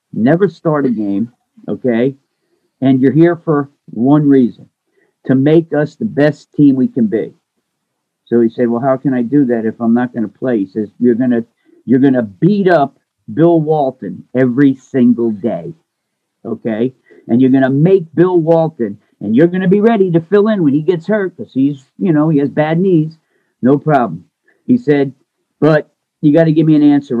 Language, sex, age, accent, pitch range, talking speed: English, male, 50-69, American, 130-160 Hz, 195 wpm